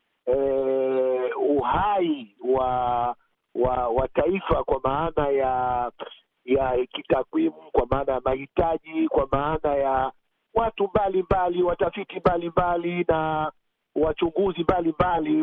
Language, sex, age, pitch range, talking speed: Swahili, male, 50-69, 145-195 Hz, 105 wpm